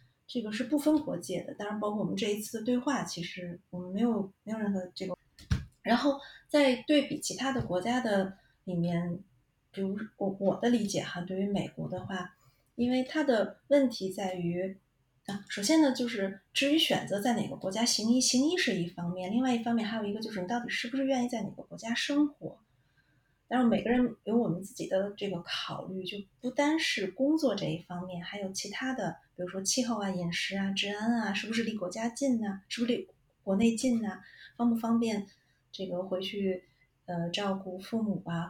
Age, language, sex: 30-49, Chinese, female